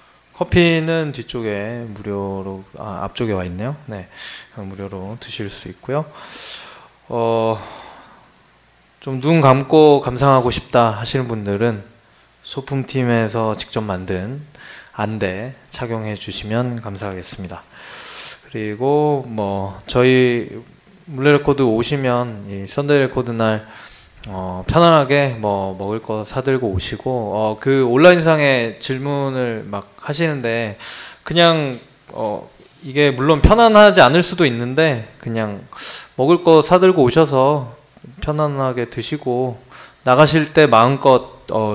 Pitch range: 105-135 Hz